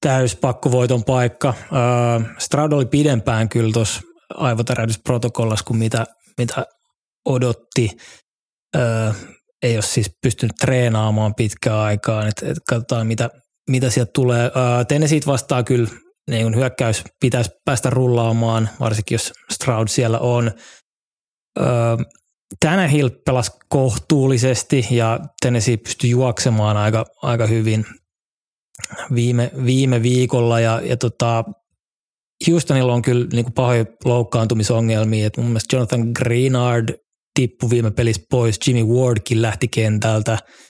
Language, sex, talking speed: Finnish, male, 110 wpm